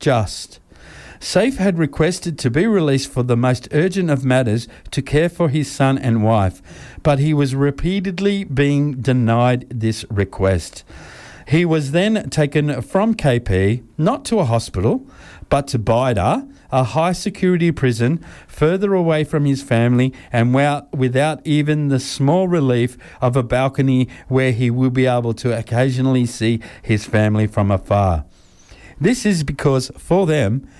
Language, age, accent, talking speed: English, 50-69, Australian, 150 wpm